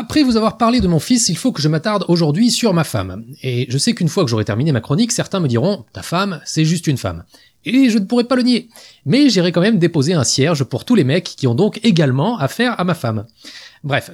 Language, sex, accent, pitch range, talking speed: French, male, French, 140-205 Hz, 265 wpm